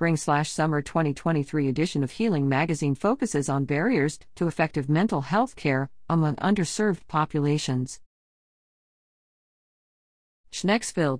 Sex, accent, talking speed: female, American, 95 wpm